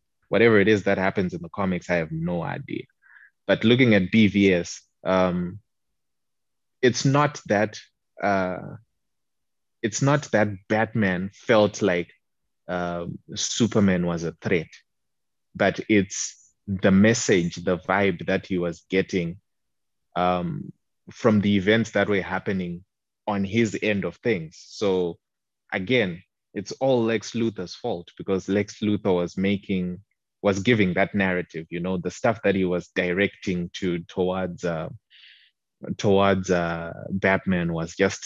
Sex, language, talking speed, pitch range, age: male, English, 135 wpm, 90-105 Hz, 20-39